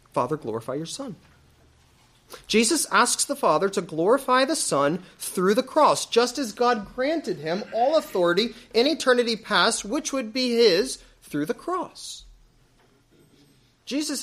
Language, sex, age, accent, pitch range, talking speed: English, male, 30-49, American, 150-245 Hz, 140 wpm